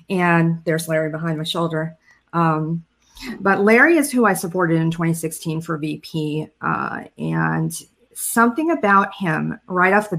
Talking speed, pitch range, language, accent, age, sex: 145 wpm, 160-195 Hz, English, American, 40-59, female